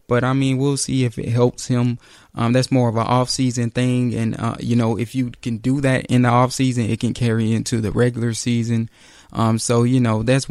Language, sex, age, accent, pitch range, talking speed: English, male, 20-39, American, 115-130 Hz, 240 wpm